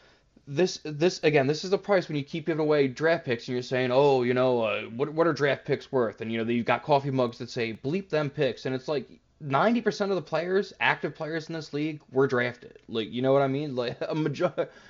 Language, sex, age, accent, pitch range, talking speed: English, male, 20-39, American, 125-165 Hz, 250 wpm